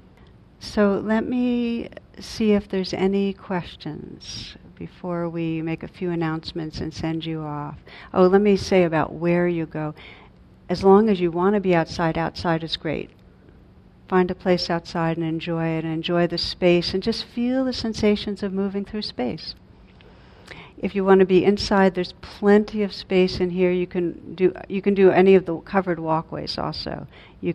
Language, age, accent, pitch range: English, 60-79, American, 165-195 Hz